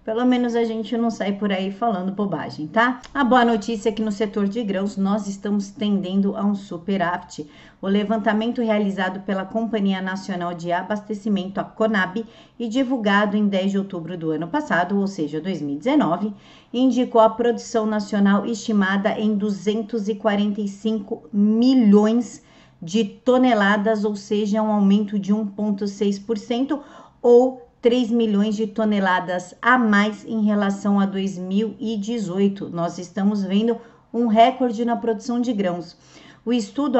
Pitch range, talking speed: 200-235 Hz, 140 wpm